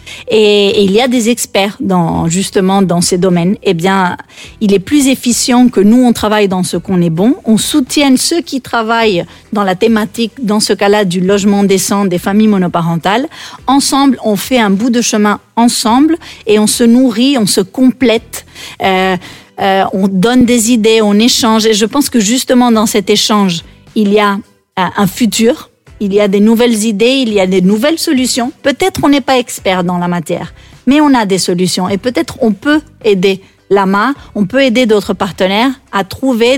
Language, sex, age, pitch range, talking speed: French, female, 40-59, 195-245 Hz, 195 wpm